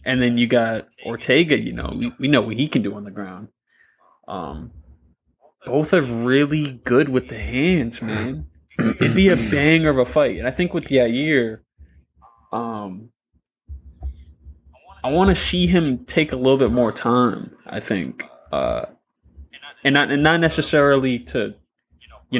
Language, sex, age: English, male, 20-39